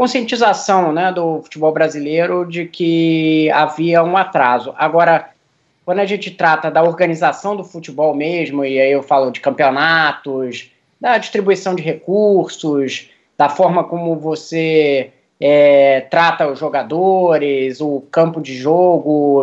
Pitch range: 145-180 Hz